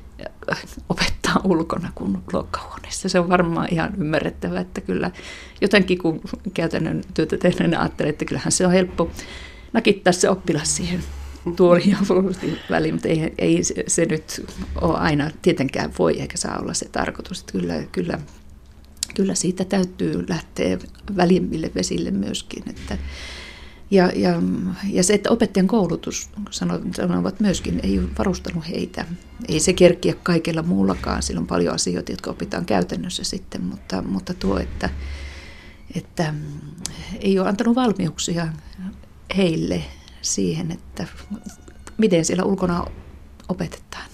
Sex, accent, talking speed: female, native, 130 wpm